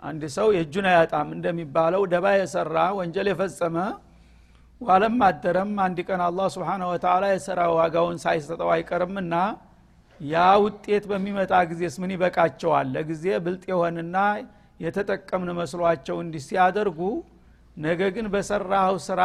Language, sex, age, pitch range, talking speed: Amharic, male, 60-79, 170-200 Hz, 95 wpm